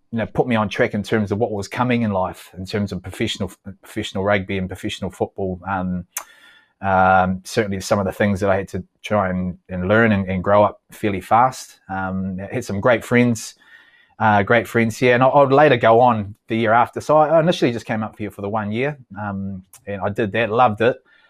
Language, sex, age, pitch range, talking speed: English, male, 20-39, 95-115 Hz, 230 wpm